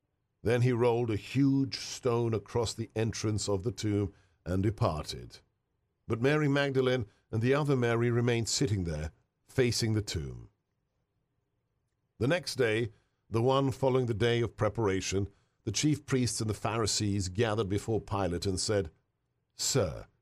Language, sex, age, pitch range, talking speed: English, male, 50-69, 100-130 Hz, 145 wpm